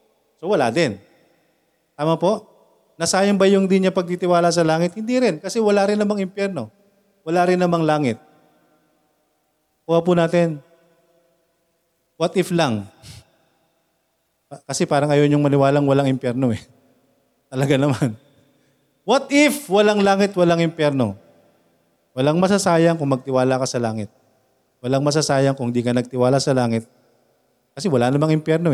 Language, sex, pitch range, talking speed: Filipino, male, 115-165 Hz, 130 wpm